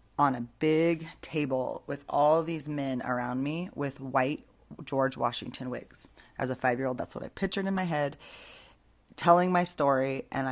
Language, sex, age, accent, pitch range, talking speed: English, female, 30-49, American, 130-155 Hz, 165 wpm